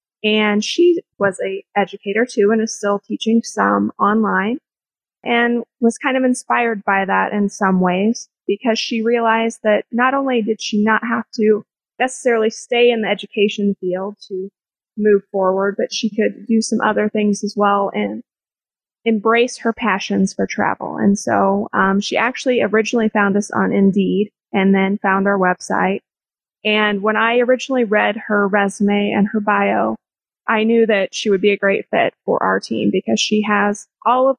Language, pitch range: English, 200-230 Hz